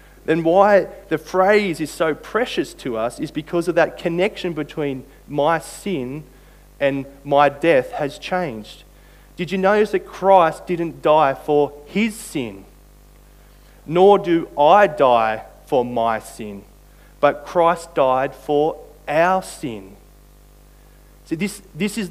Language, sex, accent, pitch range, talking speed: English, male, Australian, 145-180 Hz, 135 wpm